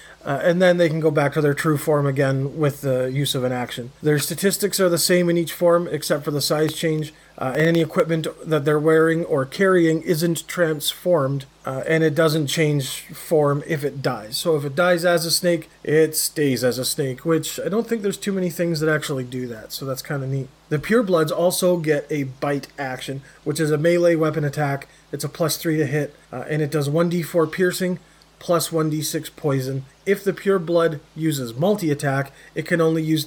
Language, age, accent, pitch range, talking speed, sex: English, 30-49, American, 140-170 Hz, 210 wpm, male